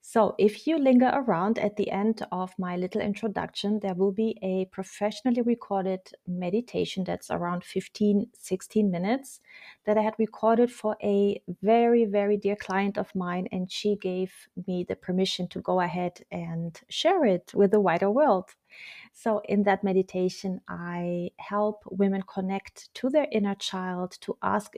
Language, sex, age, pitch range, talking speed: English, female, 30-49, 185-220 Hz, 160 wpm